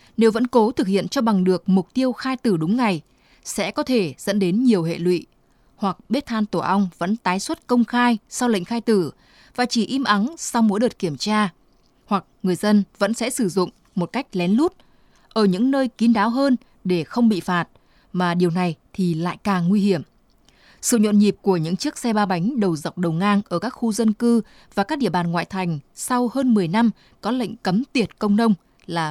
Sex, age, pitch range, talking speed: female, 20-39, 180-235 Hz, 225 wpm